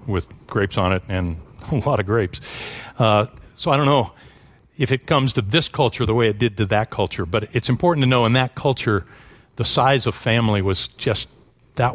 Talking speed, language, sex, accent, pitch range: 210 wpm, English, male, American, 100-125 Hz